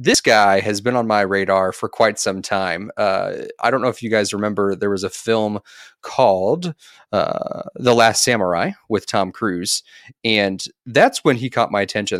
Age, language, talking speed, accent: 30-49, English, 185 wpm, American